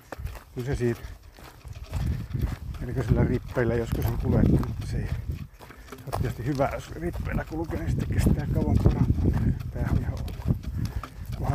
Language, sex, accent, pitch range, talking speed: Finnish, male, native, 115-130 Hz, 120 wpm